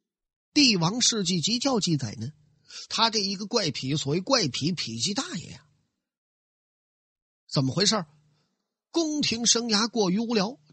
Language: Chinese